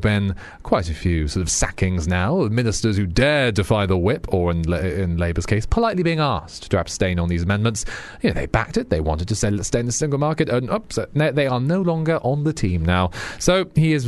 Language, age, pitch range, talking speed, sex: English, 30-49, 95-140 Hz, 245 wpm, male